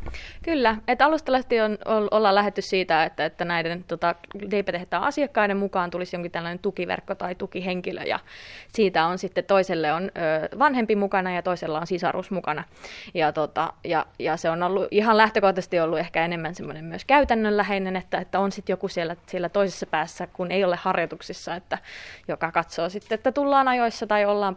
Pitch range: 170-205 Hz